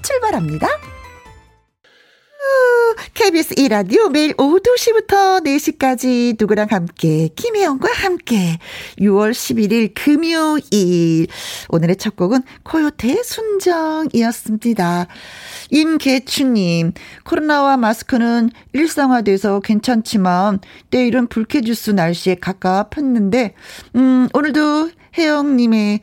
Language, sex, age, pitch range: Korean, female, 40-59, 195-295 Hz